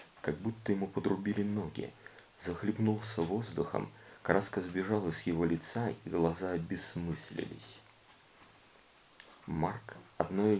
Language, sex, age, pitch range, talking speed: Russian, male, 40-59, 85-100 Hz, 95 wpm